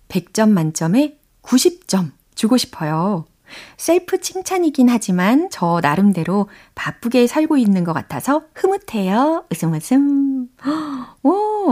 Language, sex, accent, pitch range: Korean, female, native, 170-265 Hz